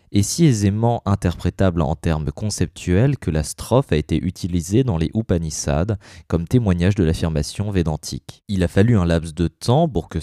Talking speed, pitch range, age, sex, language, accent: 175 wpm, 85-105 Hz, 20-39, male, French, French